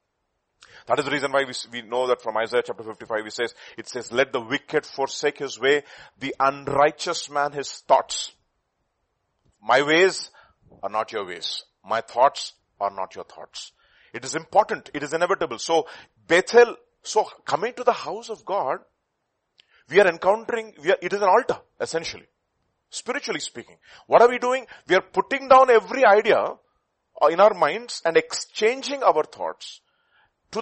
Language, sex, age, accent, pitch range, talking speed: English, male, 40-59, Indian, 140-210 Hz, 165 wpm